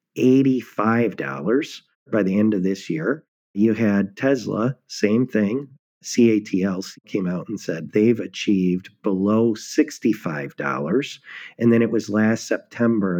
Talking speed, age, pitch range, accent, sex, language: 120 wpm, 40-59, 105-130 Hz, American, male, English